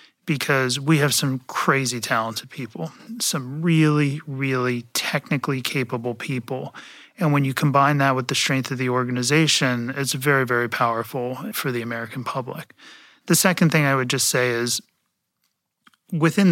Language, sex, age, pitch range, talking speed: English, male, 30-49, 125-150 Hz, 150 wpm